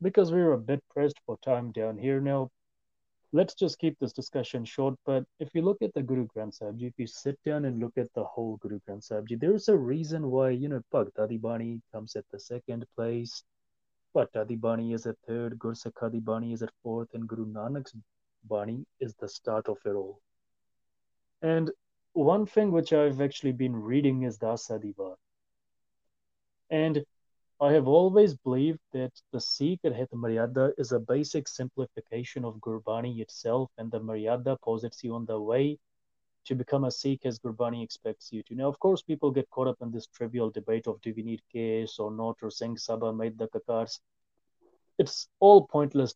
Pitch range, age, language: 115-145 Hz, 30-49, English